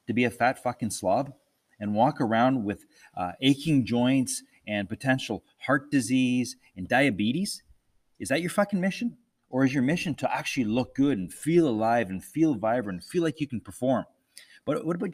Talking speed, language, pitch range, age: 180 wpm, English, 105-140 Hz, 30-49